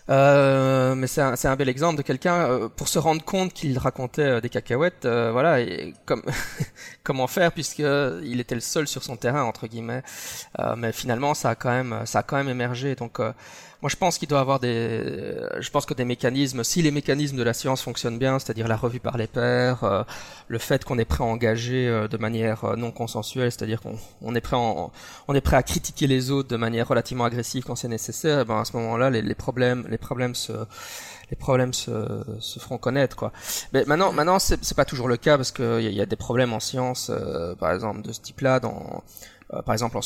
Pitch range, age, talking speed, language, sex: 115-135 Hz, 20-39, 230 wpm, French, male